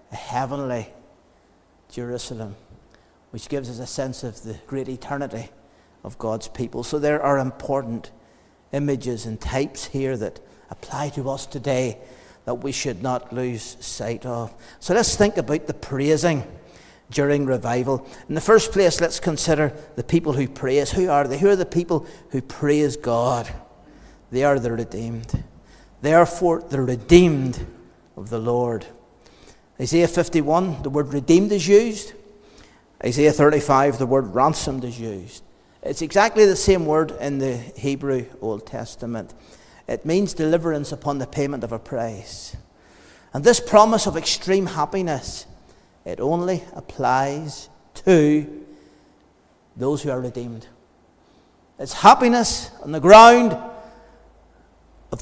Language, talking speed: English, 135 wpm